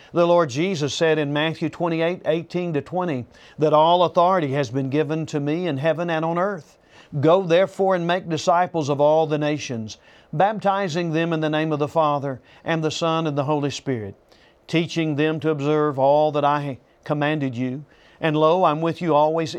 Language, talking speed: English, 185 wpm